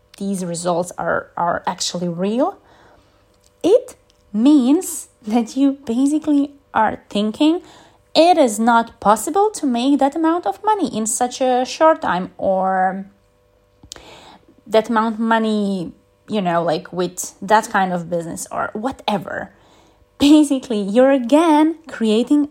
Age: 20-39